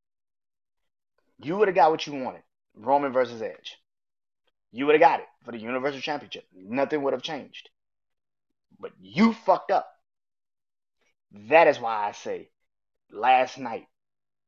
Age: 20-39